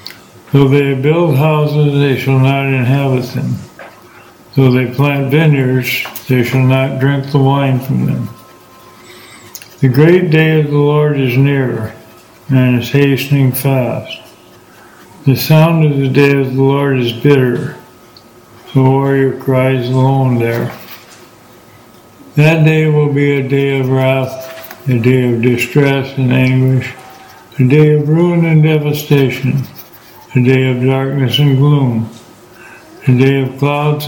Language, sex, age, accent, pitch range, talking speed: English, male, 60-79, American, 130-145 Hz, 140 wpm